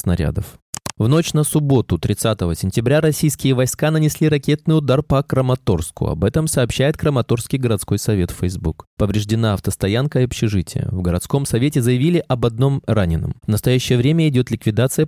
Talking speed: 145 wpm